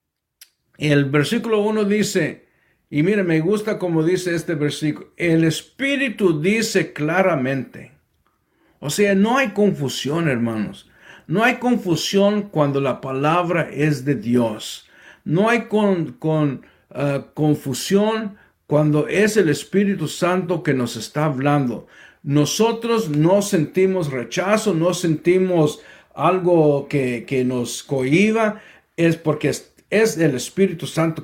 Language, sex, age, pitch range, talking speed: English, male, 60-79, 150-205 Hz, 125 wpm